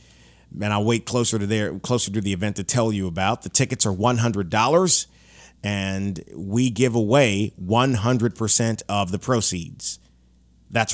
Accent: American